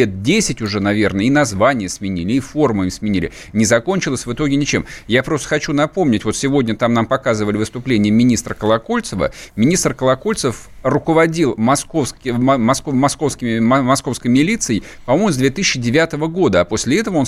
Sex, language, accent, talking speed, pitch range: male, Russian, native, 140 wpm, 125-155 Hz